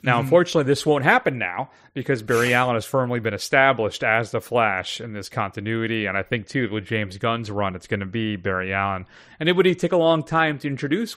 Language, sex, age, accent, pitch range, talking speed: English, male, 30-49, American, 110-135 Hz, 225 wpm